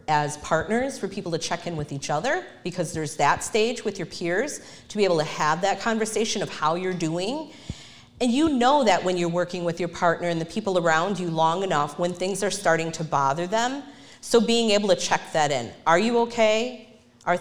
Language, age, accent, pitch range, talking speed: English, 40-59, American, 160-195 Hz, 215 wpm